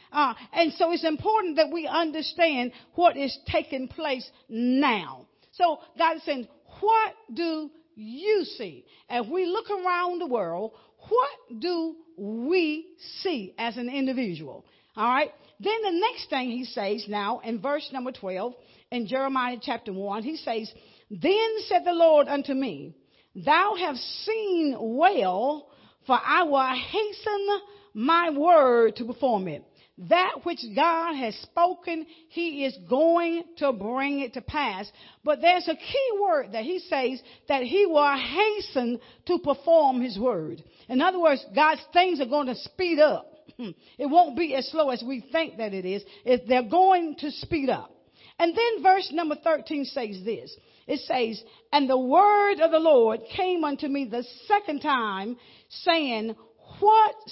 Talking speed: 155 wpm